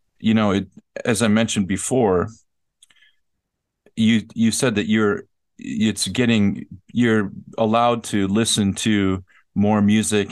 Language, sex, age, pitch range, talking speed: English, male, 40-59, 100-115 Hz, 120 wpm